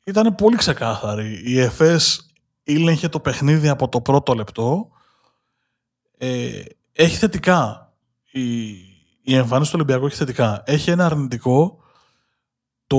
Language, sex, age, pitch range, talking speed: Greek, male, 20-39, 125-155 Hz, 120 wpm